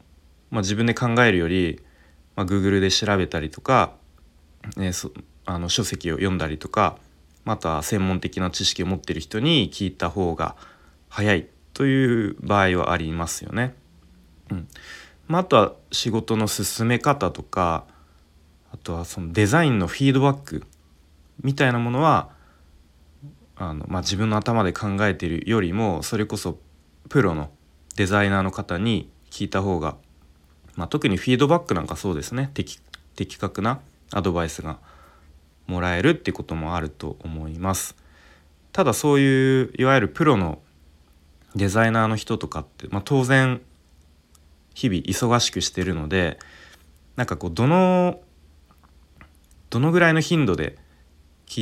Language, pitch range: Japanese, 75-110 Hz